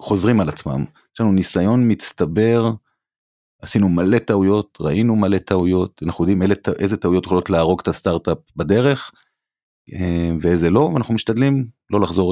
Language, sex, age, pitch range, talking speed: Hebrew, male, 30-49, 90-115 Hz, 135 wpm